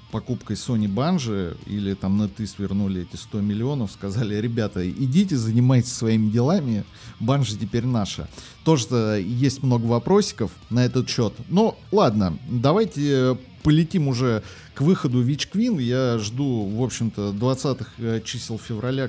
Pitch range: 105-125 Hz